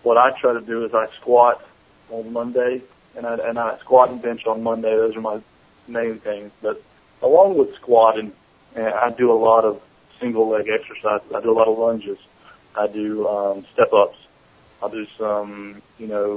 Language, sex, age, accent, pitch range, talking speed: English, male, 30-49, American, 110-130 Hz, 185 wpm